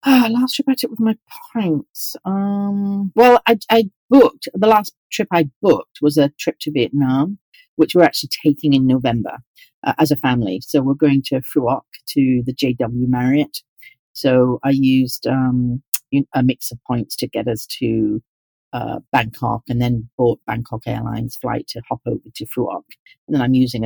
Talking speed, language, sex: 185 wpm, English, female